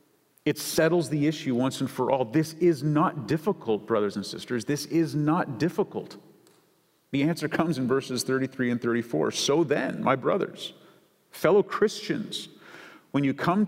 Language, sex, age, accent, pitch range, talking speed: English, male, 40-59, American, 120-155 Hz, 160 wpm